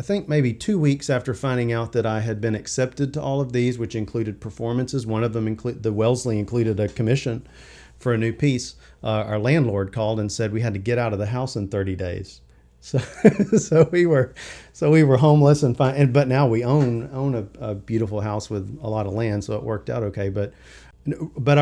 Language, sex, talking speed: English, male, 230 wpm